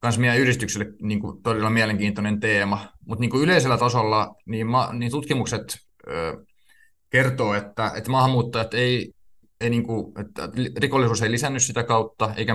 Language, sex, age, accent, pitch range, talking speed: Finnish, male, 20-39, native, 105-125 Hz, 95 wpm